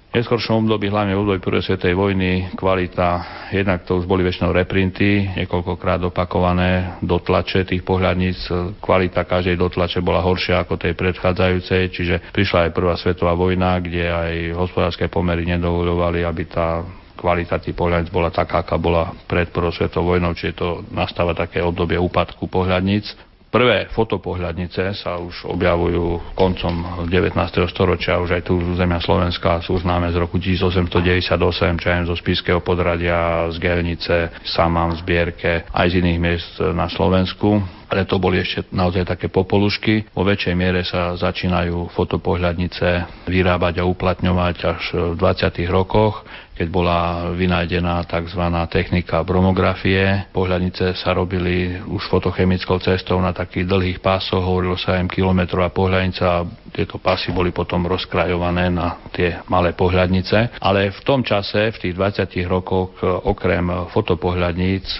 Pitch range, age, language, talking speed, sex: 85-95 Hz, 40-59, Slovak, 140 wpm, male